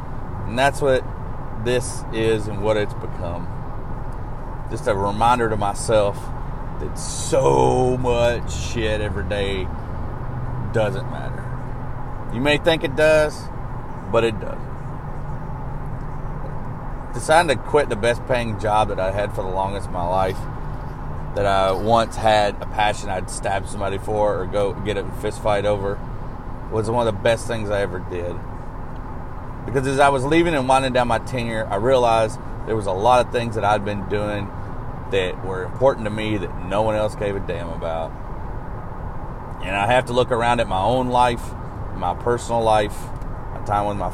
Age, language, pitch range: 30-49, English, 100-125 Hz